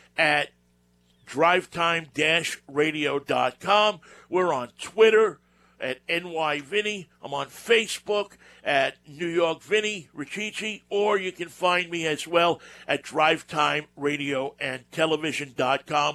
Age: 50-69